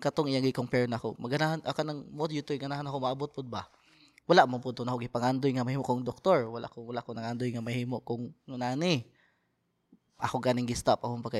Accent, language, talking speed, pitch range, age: native, Filipino, 215 wpm, 115-140 Hz, 20-39